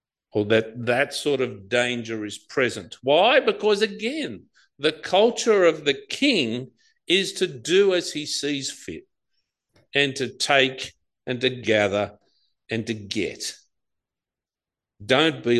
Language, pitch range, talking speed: English, 110-170 Hz, 130 wpm